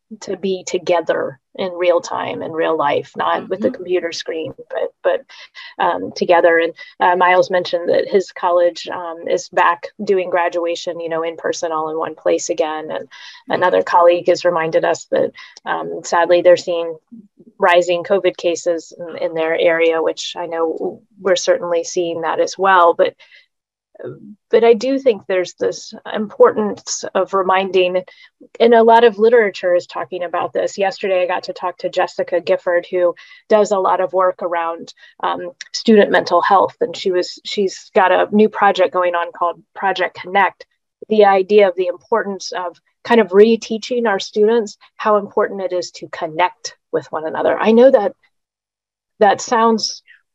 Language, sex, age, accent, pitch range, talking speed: English, female, 30-49, American, 175-225 Hz, 165 wpm